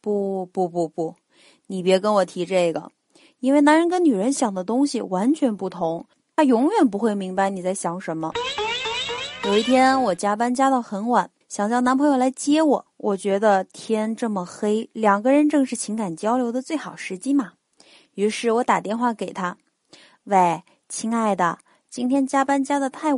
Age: 20-39